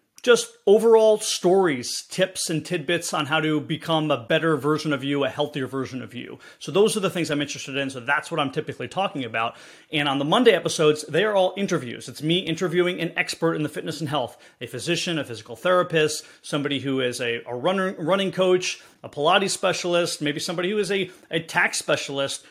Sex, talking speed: male, 210 wpm